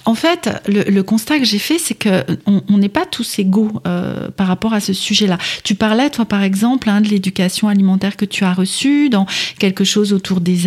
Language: French